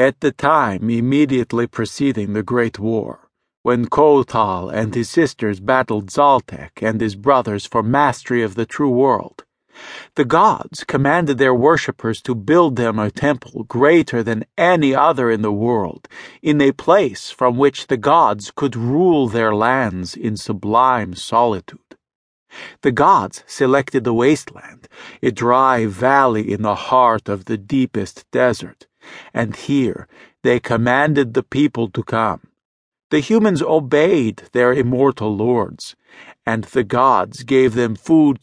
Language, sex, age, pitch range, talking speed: English, male, 50-69, 115-140 Hz, 140 wpm